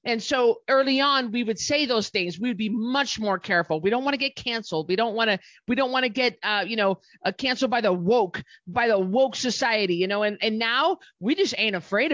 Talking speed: 250 wpm